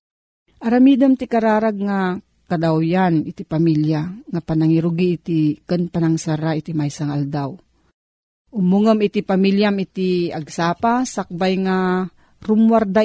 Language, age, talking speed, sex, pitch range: Filipino, 40-59, 105 wpm, female, 165-215 Hz